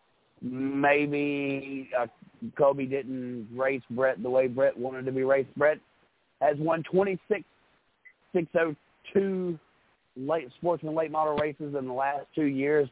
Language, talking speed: English, 145 wpm